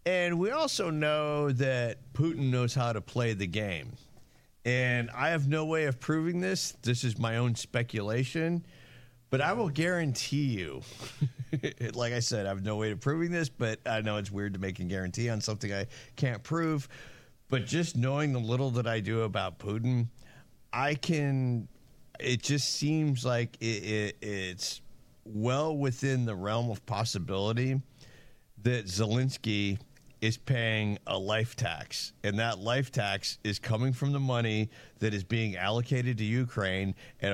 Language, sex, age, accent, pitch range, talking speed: English, male, 50-69, American, 105-135 Hz, 160 wpm